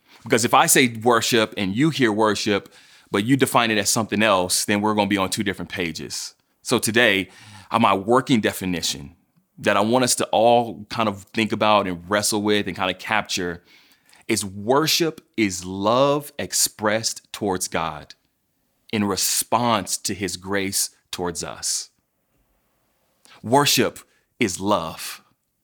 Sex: male